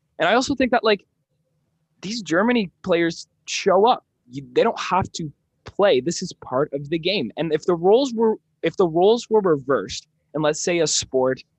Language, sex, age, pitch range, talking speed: English, male, 20-39, 125-165 Hz, 195 wpm